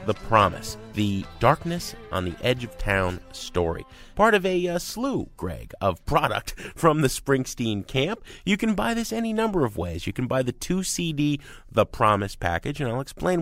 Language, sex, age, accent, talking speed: English, male, 30-49, American, 190 wpm